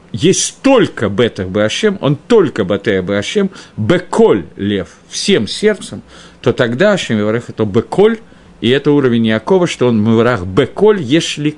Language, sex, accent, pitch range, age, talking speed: Russian, male, native, 110-165 Hz, 50-69, 125 wpm